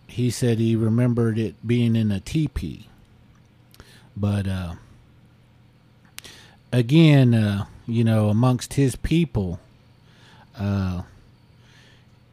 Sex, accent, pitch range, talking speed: male, American, 100-120 Hz, 90 wpm